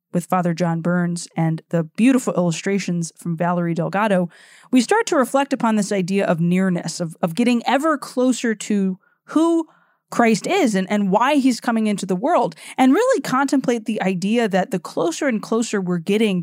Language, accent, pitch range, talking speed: English, American, 180-235 Hz, 180 wpm